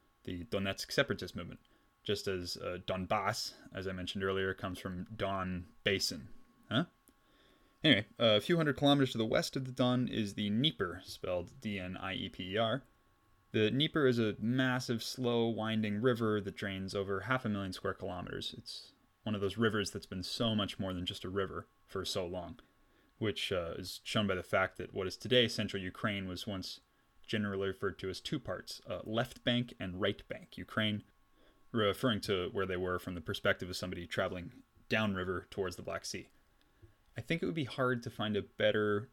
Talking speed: 185 wpm